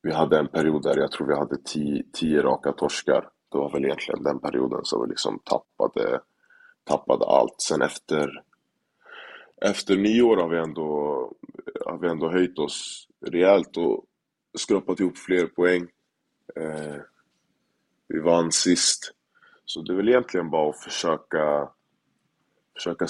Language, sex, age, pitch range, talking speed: Swedish, male, 20-39, 75-100 Hz, 150 wpm